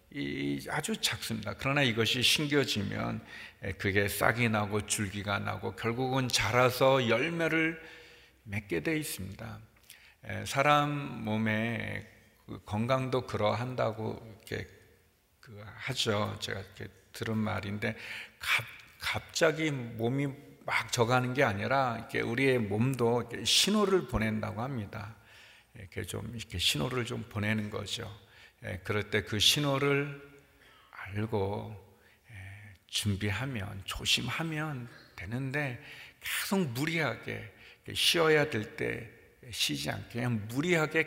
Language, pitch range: Korean, 105-135 Hz